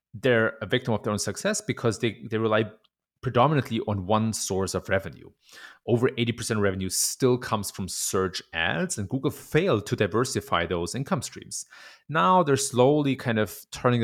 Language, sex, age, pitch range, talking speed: English, male, 30-49, 95-125 Hz, 170 wpm